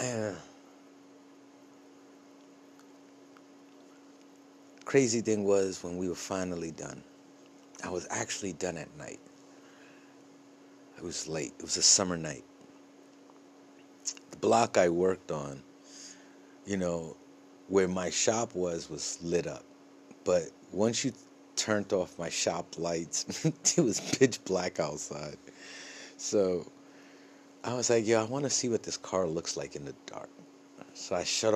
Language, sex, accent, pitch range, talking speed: English, male, American, 85-110 Hz, 135 wpm